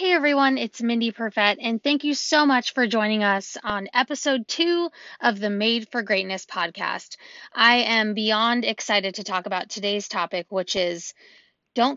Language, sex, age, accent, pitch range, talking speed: English, female, 20-39, American, 205-270 Hz, 170 wpm